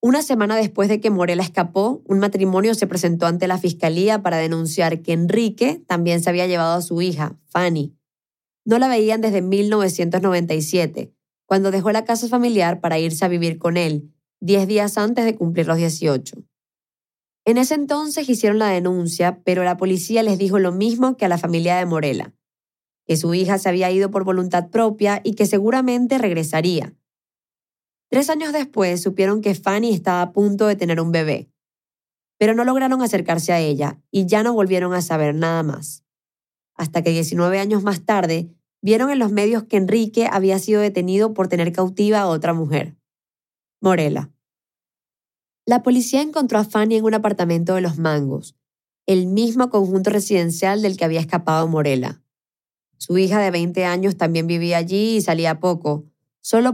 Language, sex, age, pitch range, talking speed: Spanish, female, 20-39, 165-215 Hz, 170 wpm